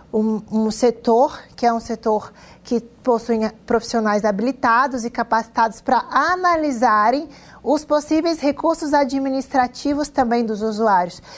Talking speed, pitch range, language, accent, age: 115 wpm, 225-275 Hz, Portuguese, Brazilian, 20-39